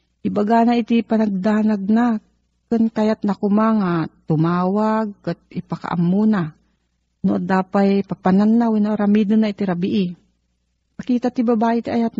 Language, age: Filipino, 40-59